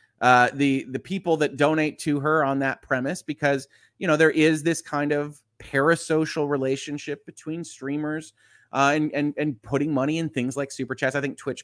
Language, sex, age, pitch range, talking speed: English, male, 30-49, 125-155 Hz, 190 wpm